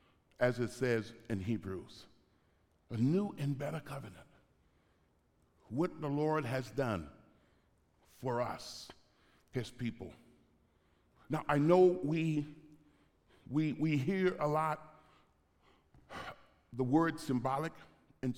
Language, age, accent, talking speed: English, 60-79, American, 105 wpm